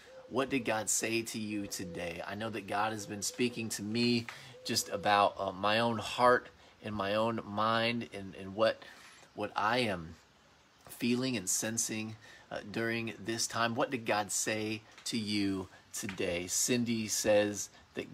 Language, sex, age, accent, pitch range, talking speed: English, male, 30-49, American, 100-115 Hz, 160 wpm